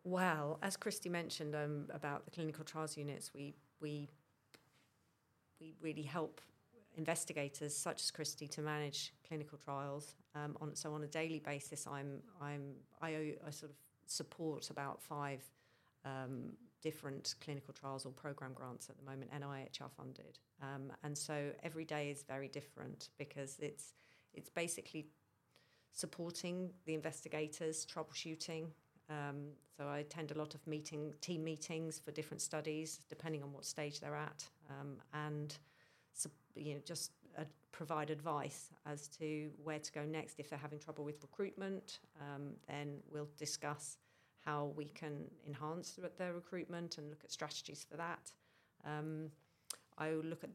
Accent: British